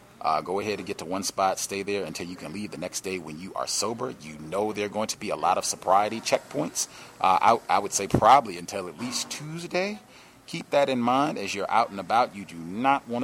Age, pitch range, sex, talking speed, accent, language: 40-59, 95-120 Hz, male, 255 wpm, American, English